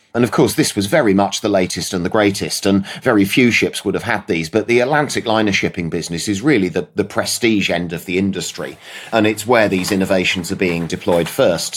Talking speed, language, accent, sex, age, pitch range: 225 wpm, English, British, male, 30-49, 95-115 Hz